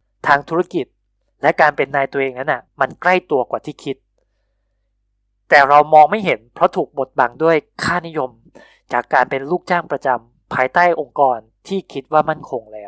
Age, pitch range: 20-39, 115-155 Hz